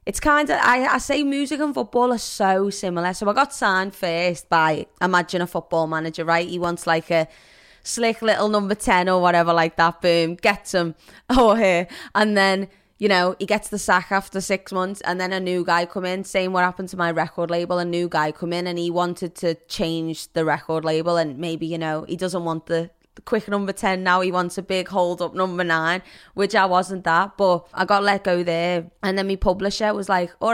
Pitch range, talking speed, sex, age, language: 170-200 Hz, 230 wpm, female, 20-39, English